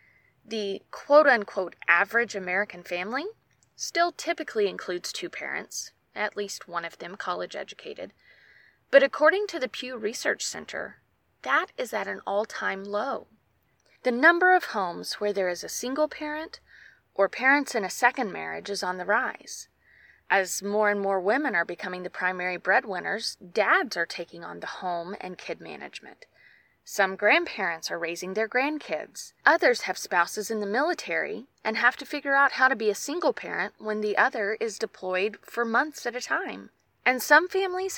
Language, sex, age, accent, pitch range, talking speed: English, female, 20-39, American, 195-280 Hz, 165 wpm